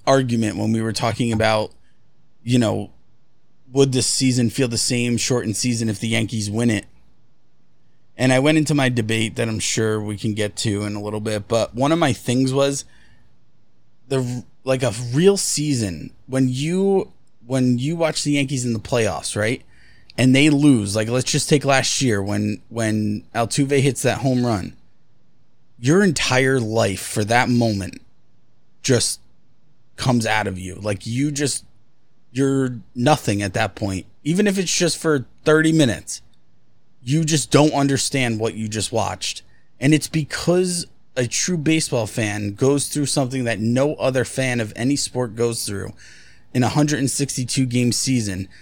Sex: male